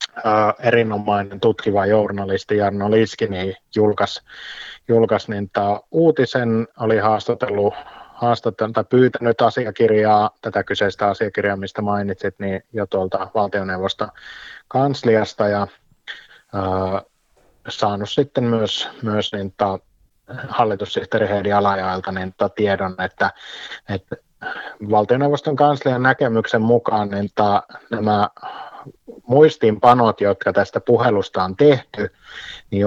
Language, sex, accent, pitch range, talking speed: Finnish, male, native, 100-125 Hz, 85 wpm